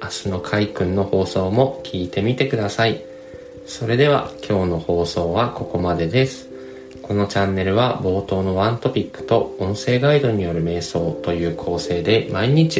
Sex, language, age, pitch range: male, Japanese, 20-39, 90-120 Hz